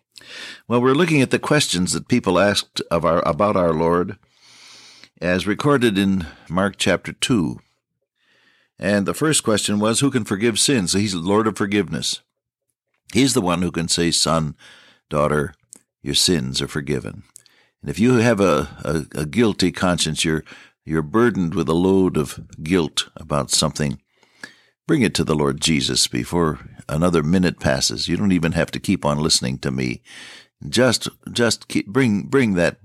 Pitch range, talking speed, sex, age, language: 75-105 Hz, 170 wpm, male, 60-79, English